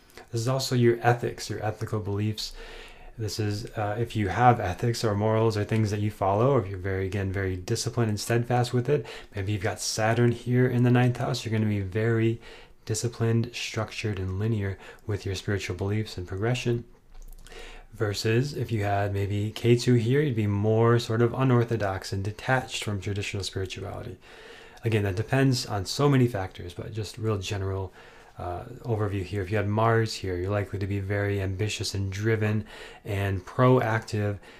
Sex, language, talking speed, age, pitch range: male, English, 180 wpm, 20-39, 100-115 Hz